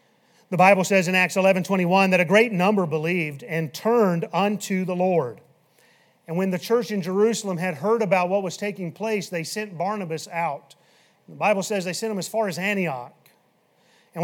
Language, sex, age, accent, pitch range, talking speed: English, male, 40-59, American, 185-230 Hz, 185 wpm